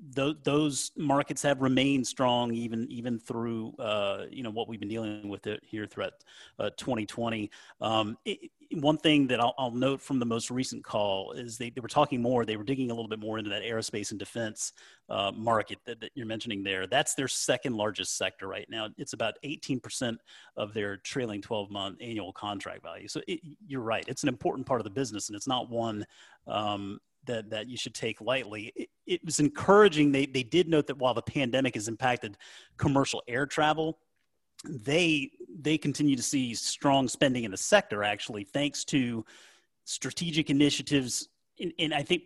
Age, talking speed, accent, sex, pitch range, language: 30-49, 190 wpm, American, male, 110-140 Hz, English